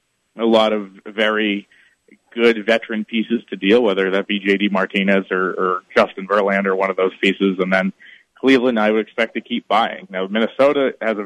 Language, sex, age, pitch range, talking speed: English, male, 30-49, 95-110 Hz, 185 wpm